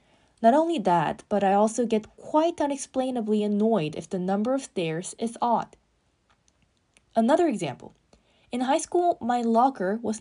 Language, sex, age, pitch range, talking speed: English, female, 20-39, 190-265 Hz, 145 wpm